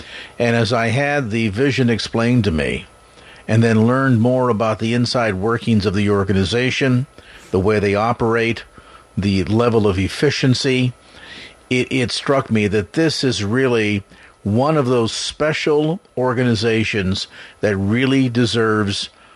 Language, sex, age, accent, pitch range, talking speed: English, male, 50-69, American, 110-135 Hz, 135 wpm